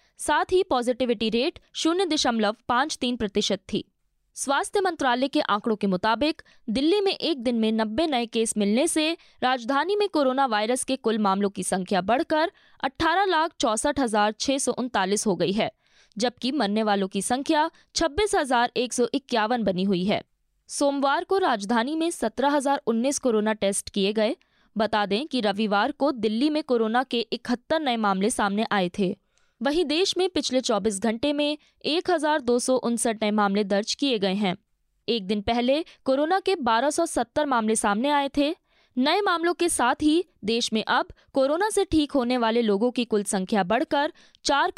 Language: Hindi